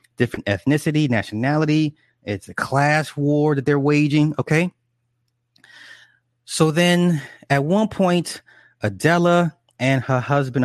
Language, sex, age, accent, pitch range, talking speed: English, male, 30-49, American, 115-150 Hz, 105 wpm